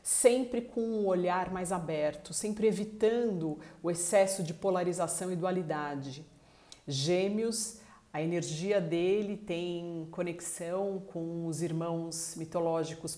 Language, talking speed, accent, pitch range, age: Portuguese, 110 wpm, Brazilian, 160-185 Hz, 50-69